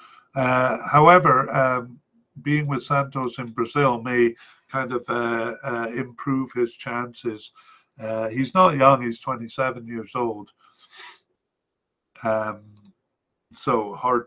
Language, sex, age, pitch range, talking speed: English, male, 50-69, 120-150 Hz, 115 wpm